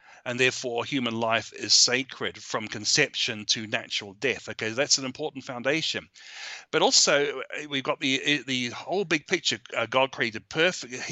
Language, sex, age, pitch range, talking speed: English, male, 40-59, 125-155 Hz, 150 wpm